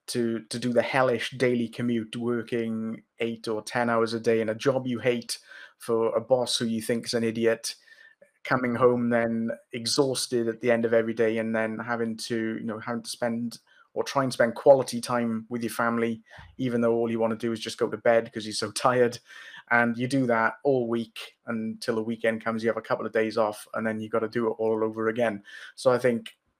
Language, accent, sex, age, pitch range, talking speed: English, British, male, 20-39, 115-130 Hz, 230 wpm